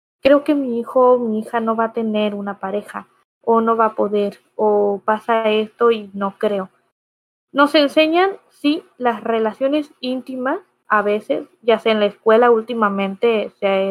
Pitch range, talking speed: 210-240 Hz, 170 wpm